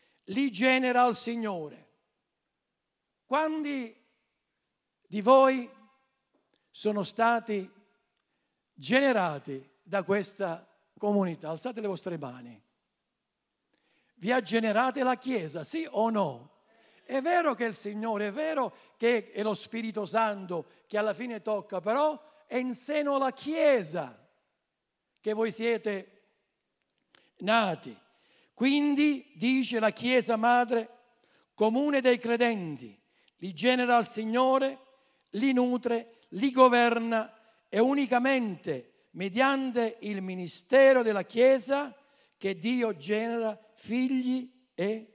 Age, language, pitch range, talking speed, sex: 50-69, Italian, 200-255 Hz, 105 wpm, male